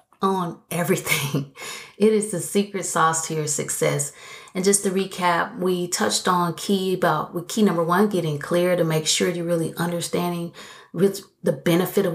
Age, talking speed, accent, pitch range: 30-49, 170 wpm, American, 160-200 Hz